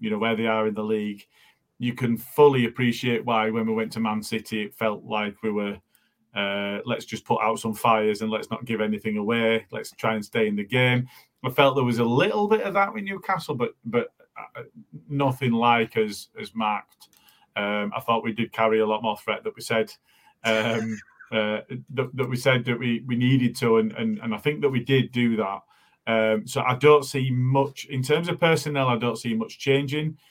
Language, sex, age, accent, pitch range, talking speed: English, male, 40-59, British, 110-140 Hz, 220 wpm